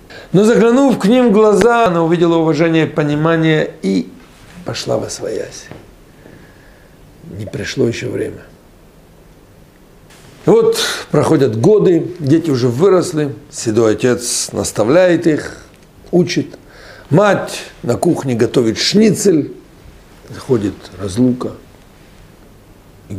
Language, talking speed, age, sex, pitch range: Russian, 100 wpm, 60-79, male, 110-170 Hz